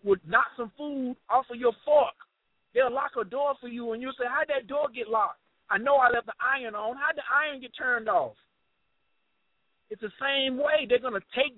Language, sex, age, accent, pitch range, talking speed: English, male, 50-69, American, 170-270 Hz, 225 wpm